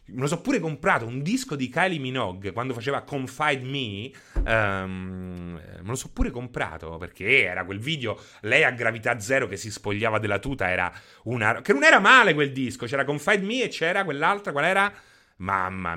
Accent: native